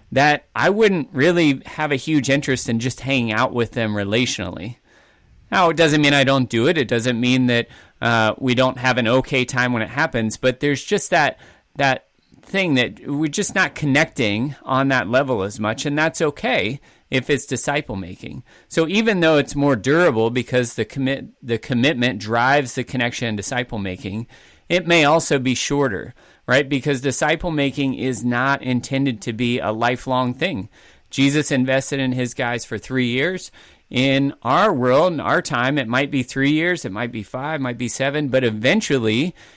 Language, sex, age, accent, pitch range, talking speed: English, male, 30-49, American, 120-145 Hz, 185 wpm